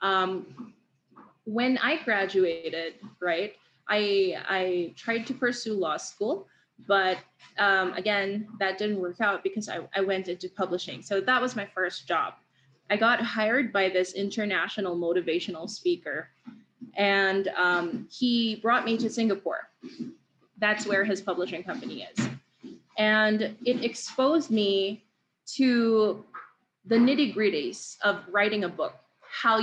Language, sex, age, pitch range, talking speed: Filipino, female, 20-39, 190-235 Hz, 130 wpm